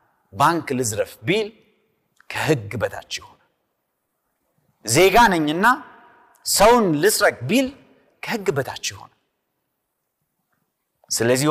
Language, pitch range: Amharic, 160-255 Hz